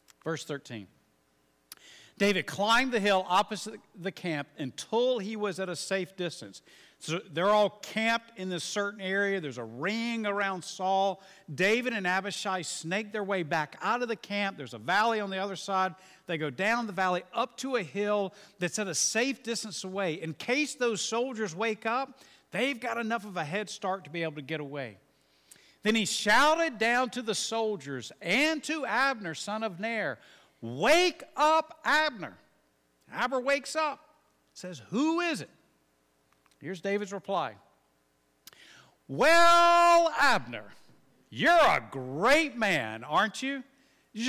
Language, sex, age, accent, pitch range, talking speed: English, male, 50-69, American, 165-240 Hz, 155 wpm